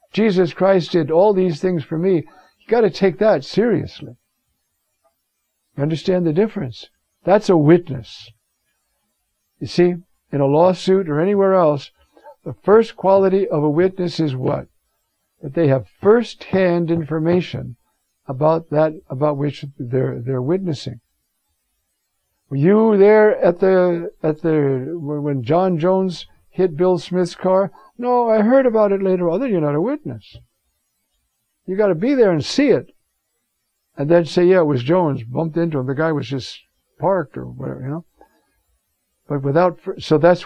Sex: male